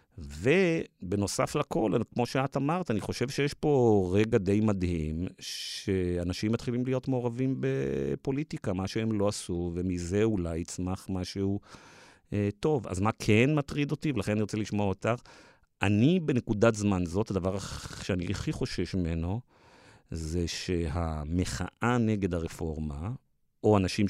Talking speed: 130 wpm